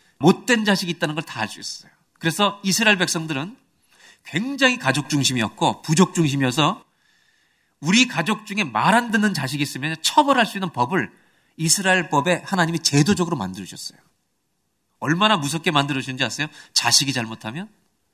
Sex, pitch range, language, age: male, 150-200 Hz, Korean, 40-59